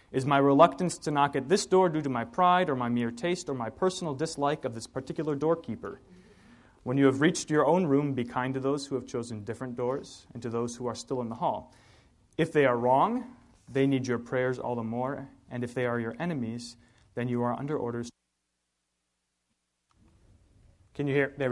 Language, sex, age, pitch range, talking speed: English, male, 30-49, 120-150 Hz, 210 wpm